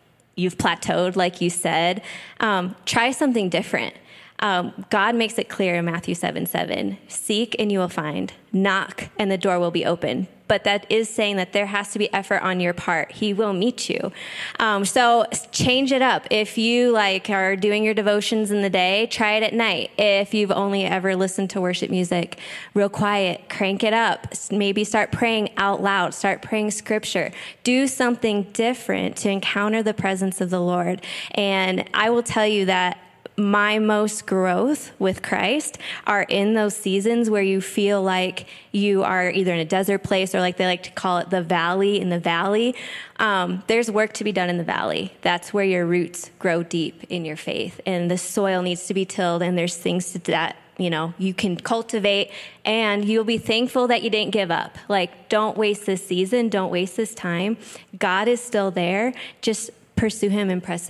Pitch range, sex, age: 185-220 Hz, female, 20-39